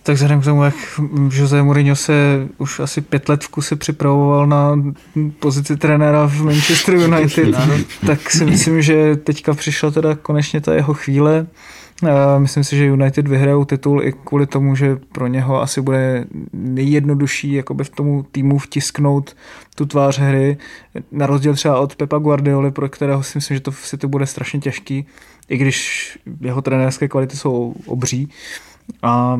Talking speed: 165 wpm